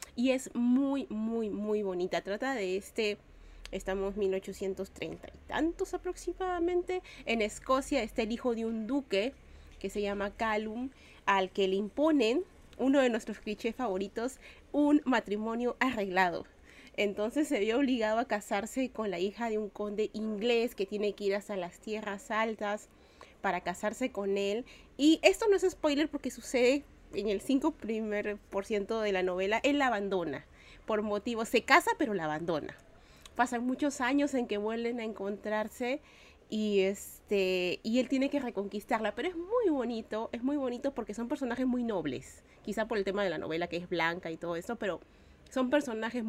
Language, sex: Spanish, female